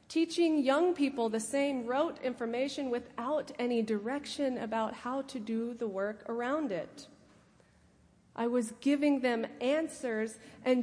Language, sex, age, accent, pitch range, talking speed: English, female, 30-49, American, 215-280 Hz, 135 wpm